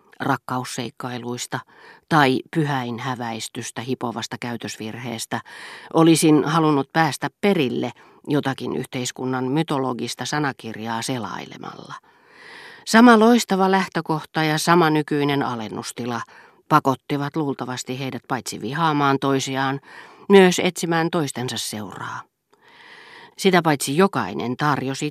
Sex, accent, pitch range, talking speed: female, native, 120-155 Hz, 85 wpm